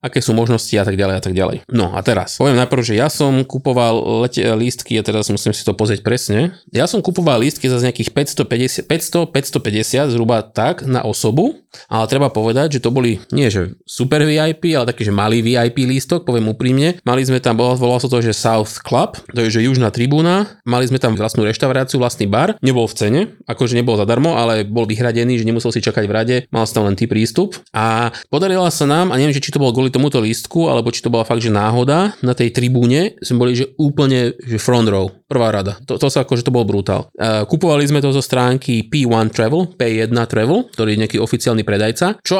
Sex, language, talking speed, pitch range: male, Slovak, 215 wpm, 110-140 Hz